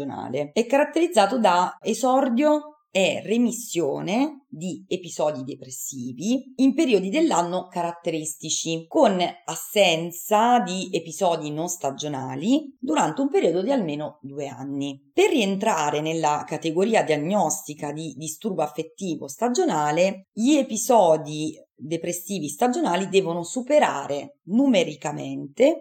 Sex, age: female, 30-49